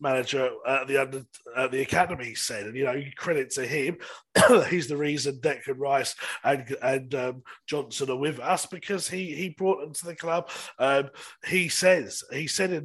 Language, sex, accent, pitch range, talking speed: English, male, British, 140-185 Hz, 190 wpm